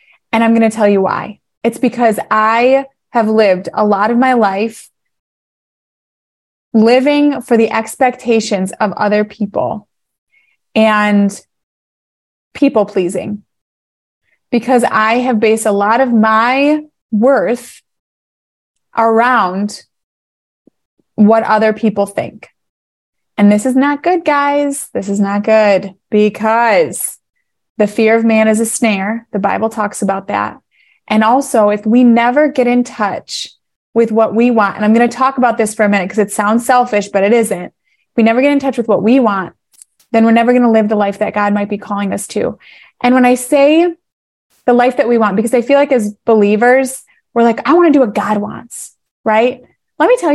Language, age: English, 20-39